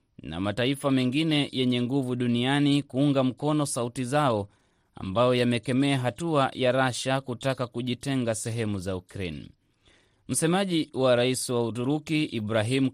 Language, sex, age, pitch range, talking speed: Swahili, male, 30-49, 125-150 Hz, 120 wpm